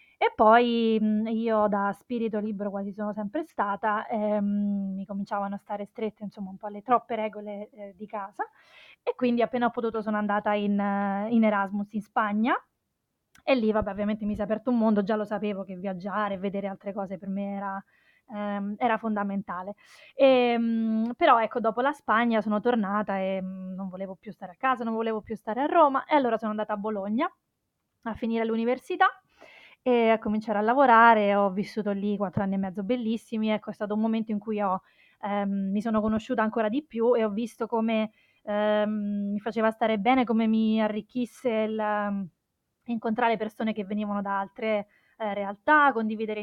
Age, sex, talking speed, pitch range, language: 20-39, female, 180 wpm, 205-230 Hz, Italian